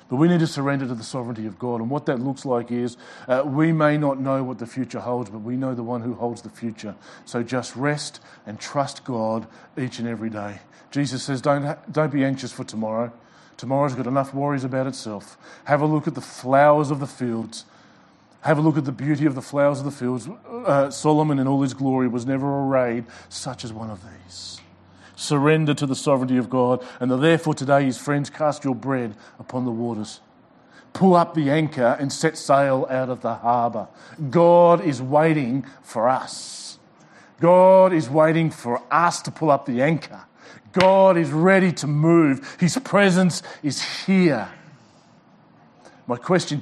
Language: English